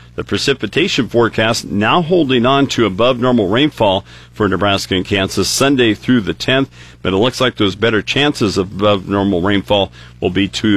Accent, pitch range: American, 95-120 Hz